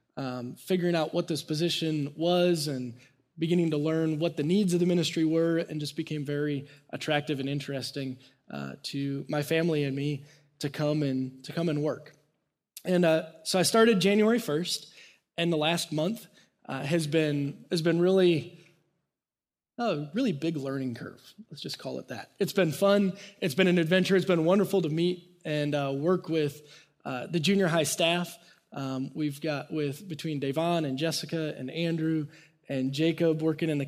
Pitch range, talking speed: 140-170 Hz, 180 wpm